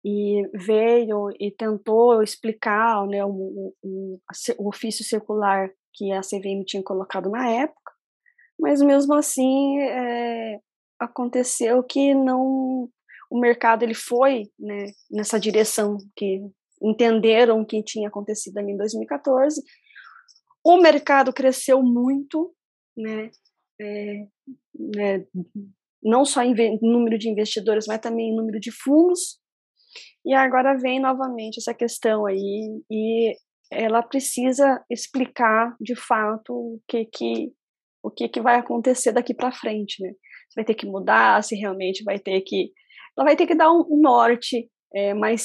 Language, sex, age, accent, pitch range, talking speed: Portuguese, female, 20-39, Brazilian, 210-255 Hz, 125 wpm